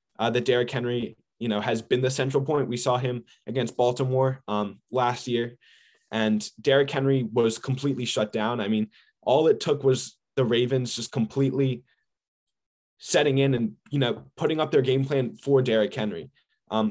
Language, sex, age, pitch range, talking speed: English, male, 20-39, 115-140 Hz, 175 wpm